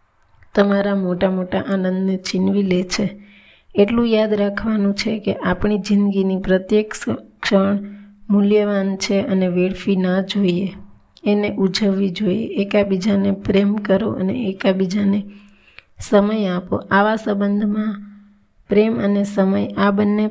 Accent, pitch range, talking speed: native, 195-210 Hz, 115 wpm